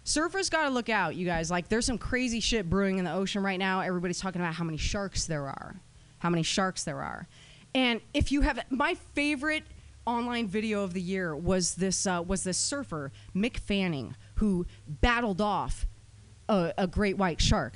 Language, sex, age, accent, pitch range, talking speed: English, female, 30-49, American, 155-230 Hz, 195 wpm